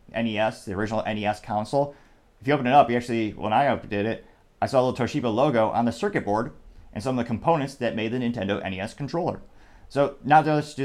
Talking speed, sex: 225 wpm, male